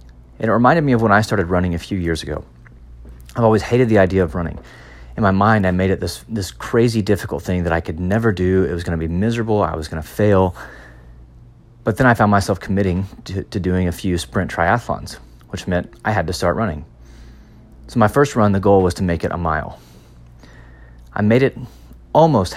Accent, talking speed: American, 220 wpm